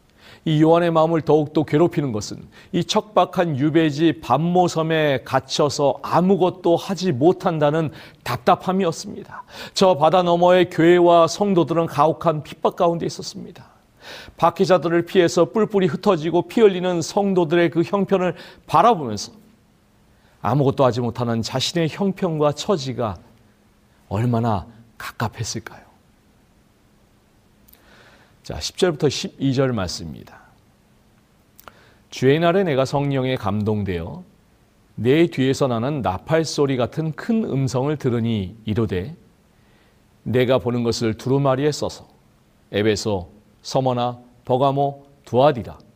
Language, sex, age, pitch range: Korean, male, 40-59, 115-170 Hz